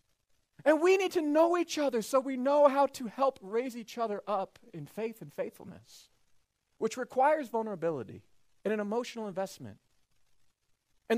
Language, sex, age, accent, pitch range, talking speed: English, male, 30-49, American, 150-245 Hz, 155 wpm